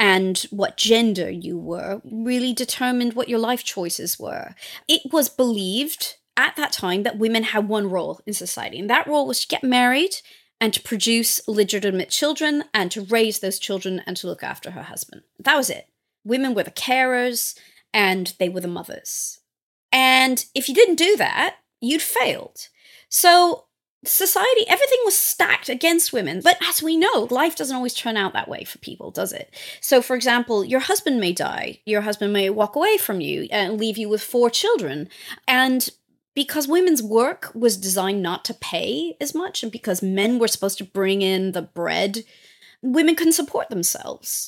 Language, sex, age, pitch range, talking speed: English, female, 30-49, 200-290 Hz, 180 wpm